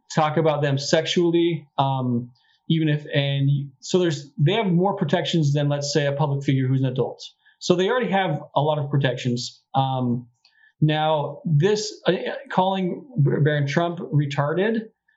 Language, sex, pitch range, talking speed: English, male, 140-175 Hz, 155 wpm